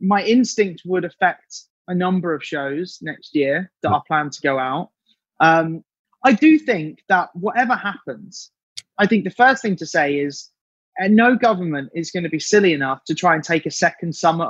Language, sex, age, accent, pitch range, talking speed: English, male, 20-39, British, 160-195 Hz, 195 wpm